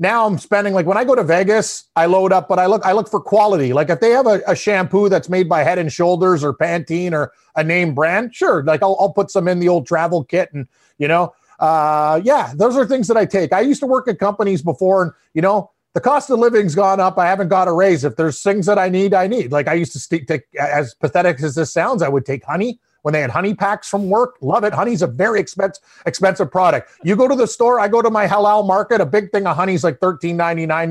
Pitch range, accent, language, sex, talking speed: 160-200 Hz, American, English, male, 270 wpm